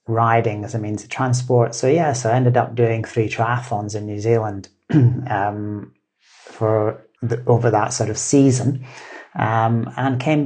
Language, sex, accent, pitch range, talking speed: English, male, British, 110-125 Hz, 155 wpm